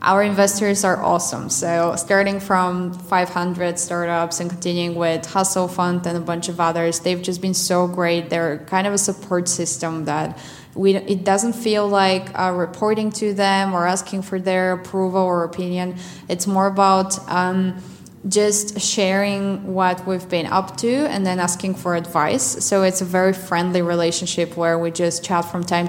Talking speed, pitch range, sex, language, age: 175 wpm, 170-190 Hz, female, English, 20-39